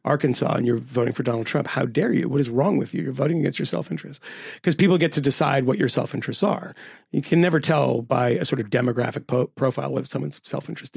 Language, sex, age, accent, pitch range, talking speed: English, male, 40-59, American, 155-220 Hz, 230 wpm